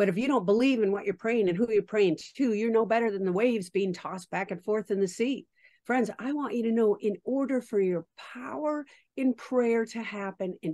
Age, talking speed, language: 50-69, 245 wpm, English